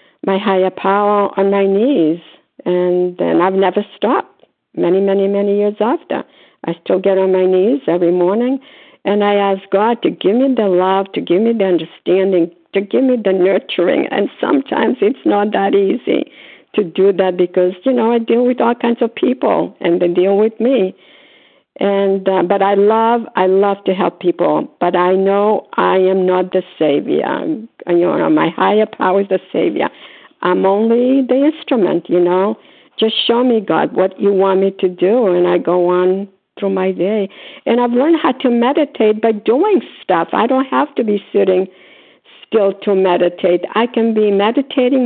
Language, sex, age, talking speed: English, female, 60-79, 185 wpm